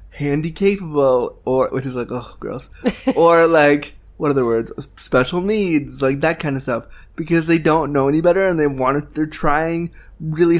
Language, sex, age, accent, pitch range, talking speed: English, male, 20-39, American, 135-175 Hz, 185 wpm